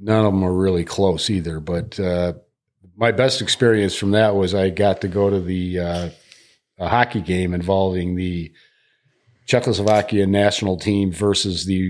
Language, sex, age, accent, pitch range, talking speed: English, male, 40-59, American, 95-110 Hz, 160 wpm